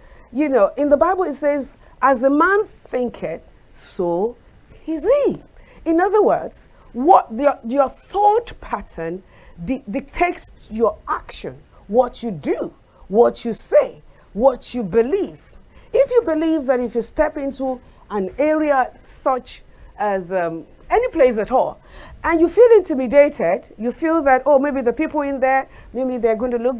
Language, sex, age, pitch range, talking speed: English, female, 50-69, 235-305 Hz, 155 wpm